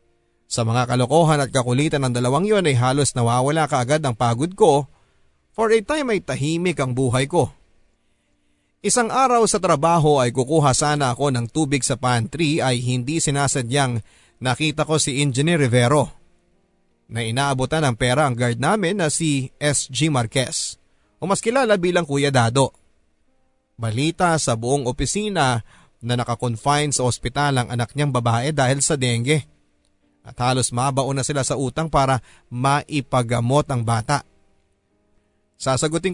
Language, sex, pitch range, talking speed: Filipino, male, 120-155 Hz, 145 wpm